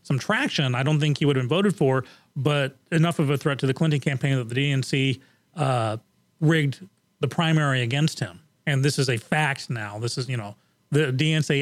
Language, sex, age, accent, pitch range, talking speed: English, male, 30-49, American, 135-170 Hz, 210 wpm